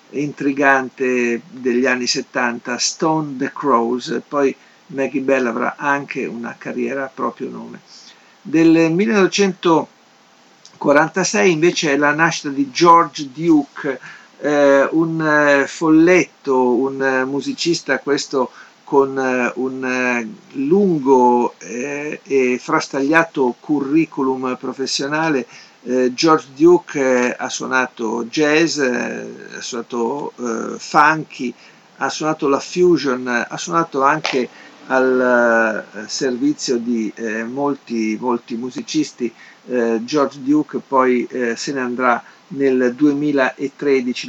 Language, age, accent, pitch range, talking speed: Italian, 50-69, native, 125-150 Hz, 100 wpm